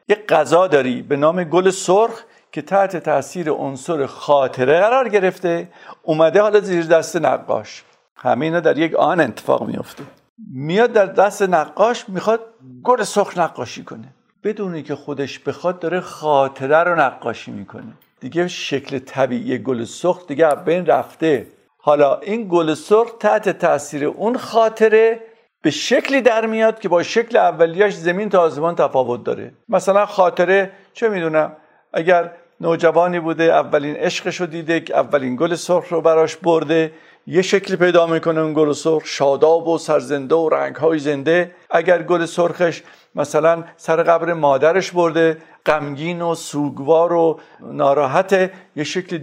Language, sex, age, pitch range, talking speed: Persian, male, 50-69, 155-185 Hz, 145 wpm